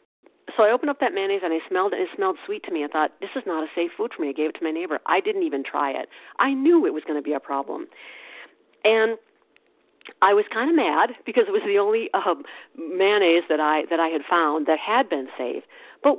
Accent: American